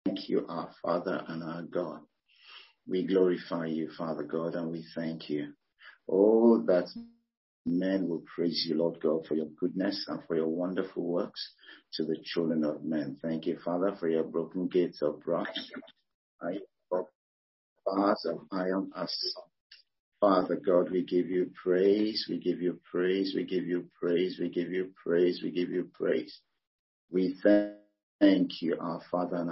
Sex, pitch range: male, 80-95 Hz